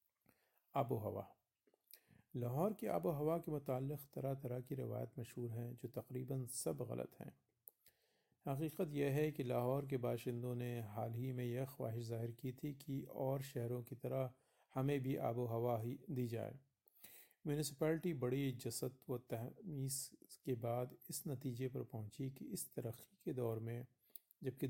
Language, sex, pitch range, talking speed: Hindi, male, 120-150 Hz, 160 wpm